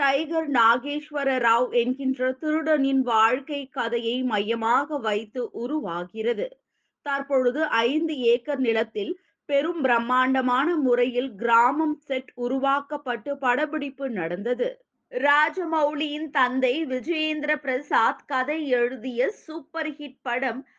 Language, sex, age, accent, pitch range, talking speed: Tamil, female, 20-39, native, 250-295 Hz, 90 wpm